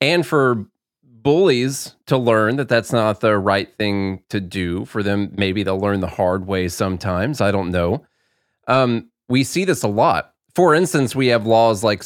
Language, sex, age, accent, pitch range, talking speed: English, male, 30-49, American, 95-120 Hz, 185 wpm